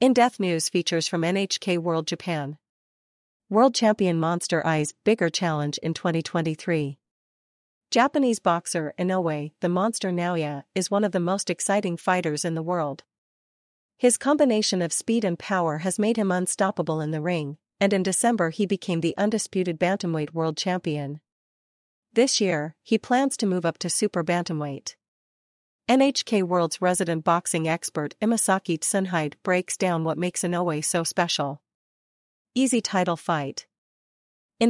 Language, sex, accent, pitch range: English, female, American, 160-200 Hz